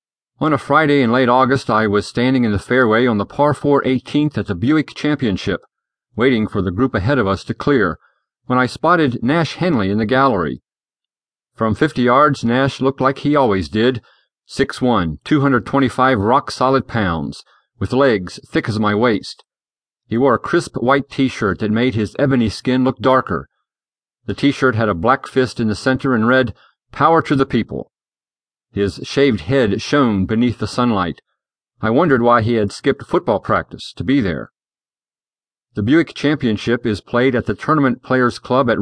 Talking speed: 175 wpm